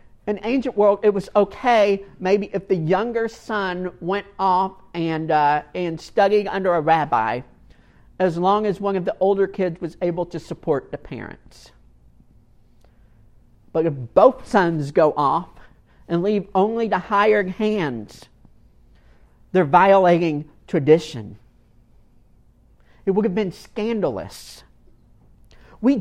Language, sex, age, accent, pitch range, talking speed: English, male, 50-69, American, 145-215 Hz, 125 wpm